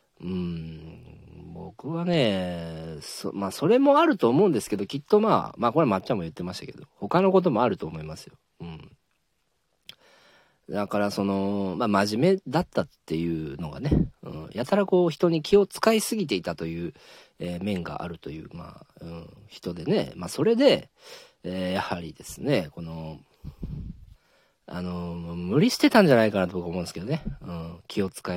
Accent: native